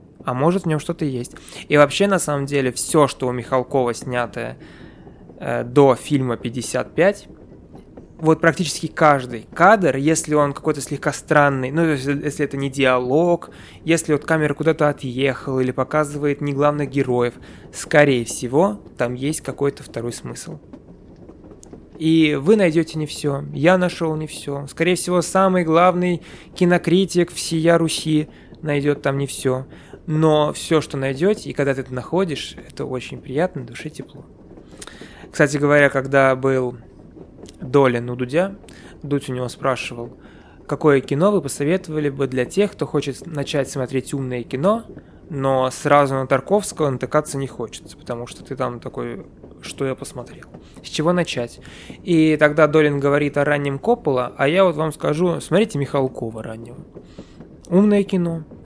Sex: male